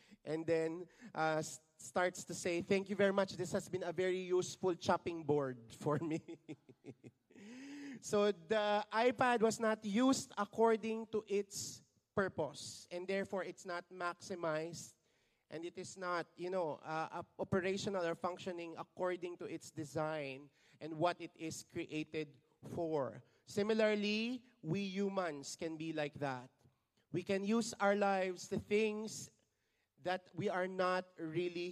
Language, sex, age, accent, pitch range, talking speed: English, male, 30-49, Filipino, 160-195 Hz, 140 wpm